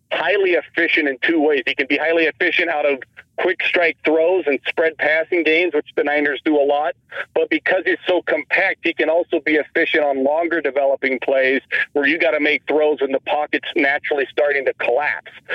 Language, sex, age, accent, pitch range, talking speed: English, male, 40-59, American, 150-205 Hz, 200 wpm